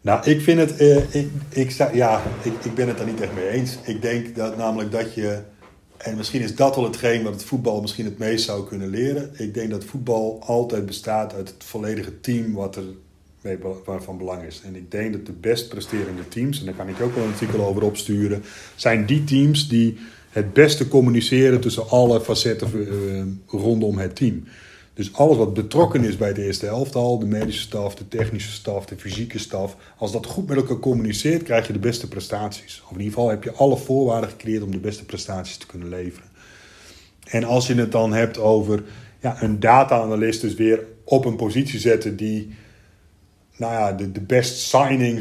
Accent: Dutch